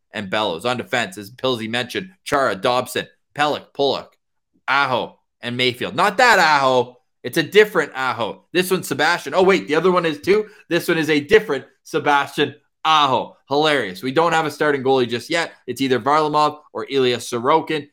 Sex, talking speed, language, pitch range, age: male, 175 wpm, English, 125-165 Hz, 20-39